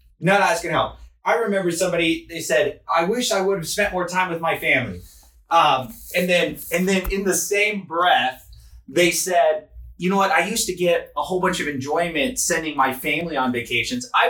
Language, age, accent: English, 30-49, American